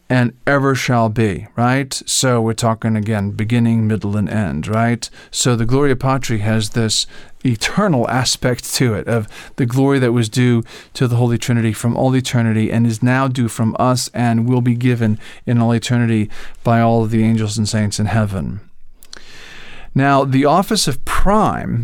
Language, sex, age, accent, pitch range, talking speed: English, male, 40-59, American, 110-130 Hz, 175 wpm